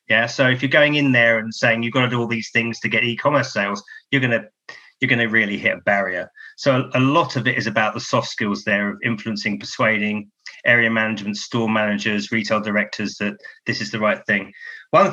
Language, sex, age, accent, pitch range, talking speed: English, male, 30-49, British, 110-130 Hz, 220 wpm